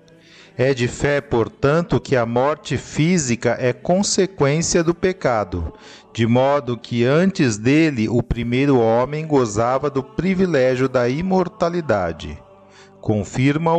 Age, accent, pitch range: 40-59, Brazilian, 120-170 Hz